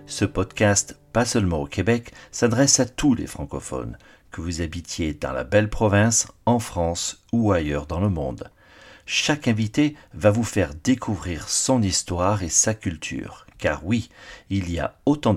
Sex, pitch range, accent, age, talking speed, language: male, 90-120 Hz, French, 50-69, 165 wpm, French